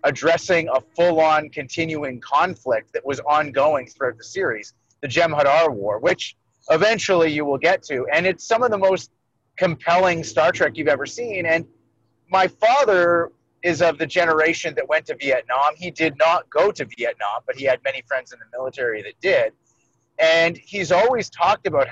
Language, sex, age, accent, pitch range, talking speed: English, male, 30-49, American, 140-180 Hz, 175 wpm